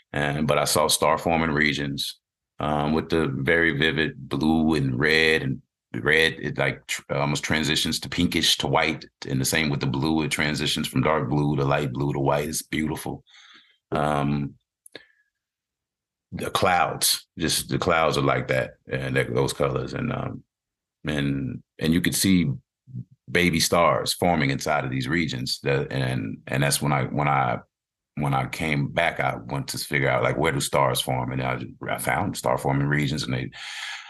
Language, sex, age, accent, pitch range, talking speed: English, male, 30-49, American, 70-85 Hz, 180 wpm